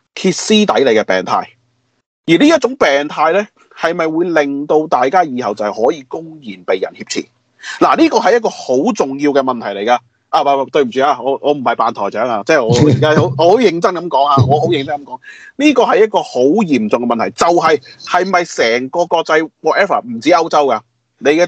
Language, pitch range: Chinese, 120-180 Hz